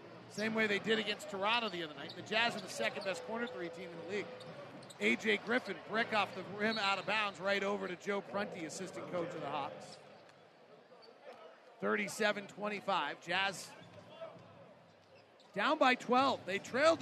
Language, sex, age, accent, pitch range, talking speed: English, male, 40-59, American, 200-310 Hz, 160 wpm